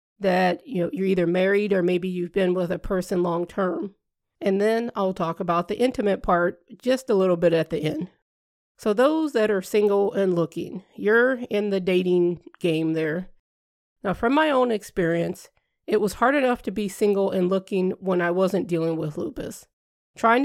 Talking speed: 195 wpm